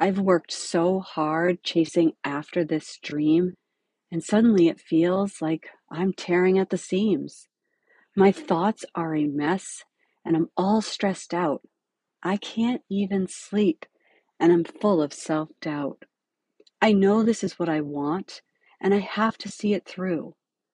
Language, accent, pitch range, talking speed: English, American, 165-210 Hz, 150 wpm